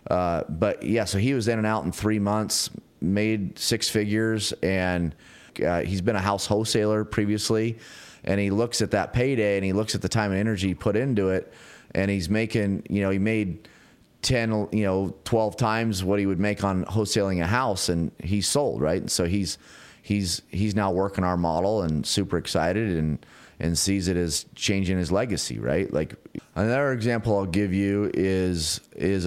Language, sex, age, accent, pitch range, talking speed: English, male, 30-49, American, 85-105 Hz, 190 wpm